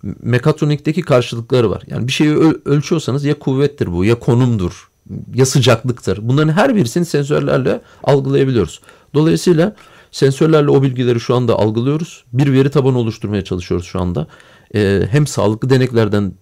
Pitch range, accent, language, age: 115-150 Hz, native, Turkish, 40-59